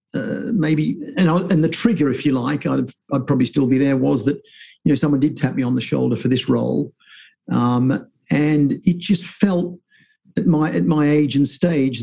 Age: 50-69